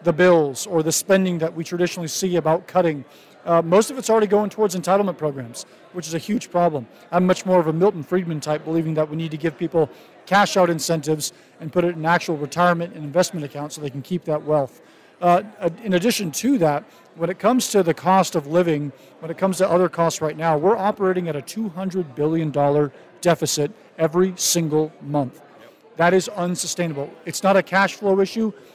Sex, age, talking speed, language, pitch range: male, 40-59, 205 wpm, English, 155-190 Hz